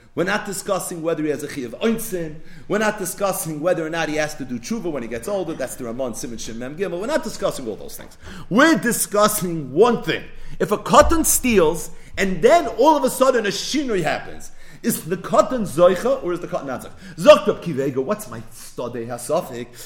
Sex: male